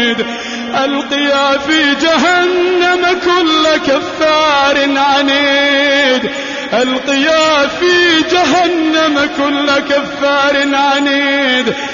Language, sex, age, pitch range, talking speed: Arabic, male, 30-49, 260-310 Hz, 60 wpm